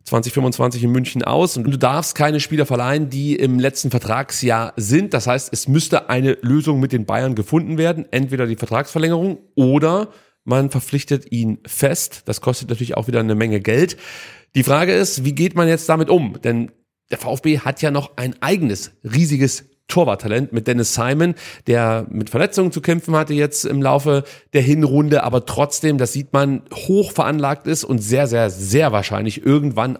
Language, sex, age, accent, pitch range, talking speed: German, male, 30-49, German, 120-150 Hz, 180 wpm